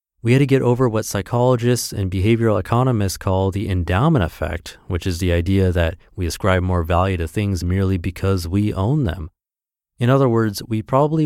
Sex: male